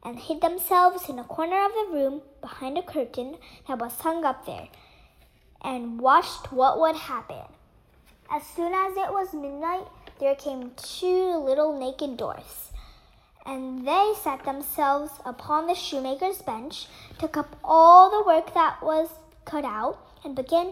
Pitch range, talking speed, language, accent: 265-335 Hz, 155 wpm, English, American